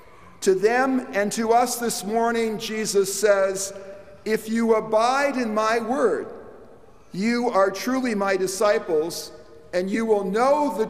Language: English